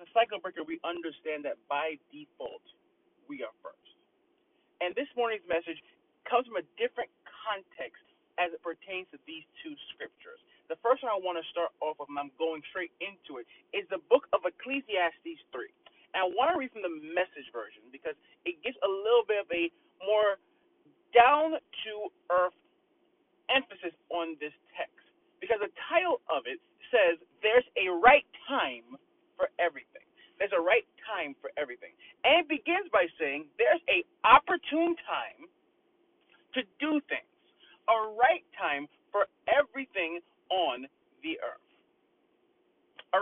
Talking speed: 155 wpm